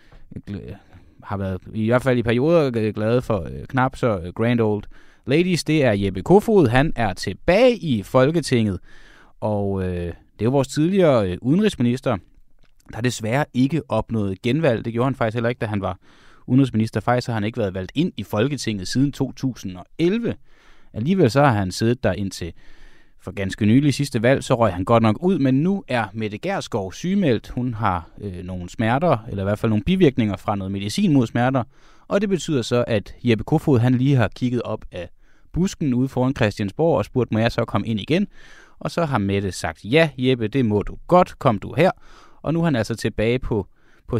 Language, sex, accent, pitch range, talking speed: Danish, male, native, 100-135 Hz, 195 wpm